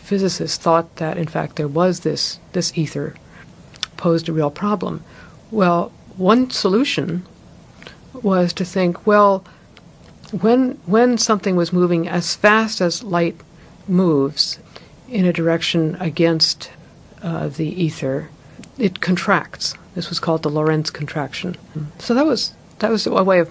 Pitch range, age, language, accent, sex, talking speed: 150-185 Hz, 60-79, English, American, female, 140 wpm